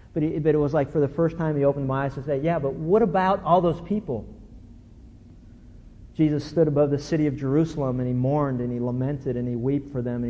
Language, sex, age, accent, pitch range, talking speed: English, male, 50-69, American, 125-170 Hz, 240 wpm